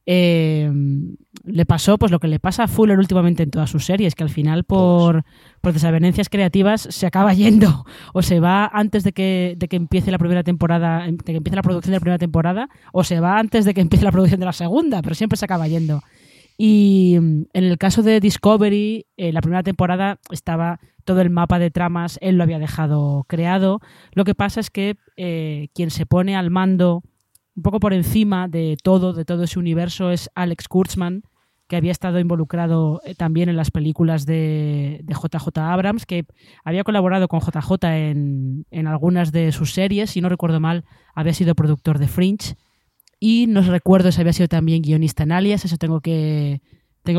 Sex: female